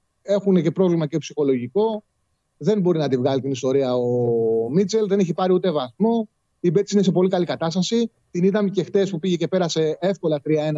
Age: 30-49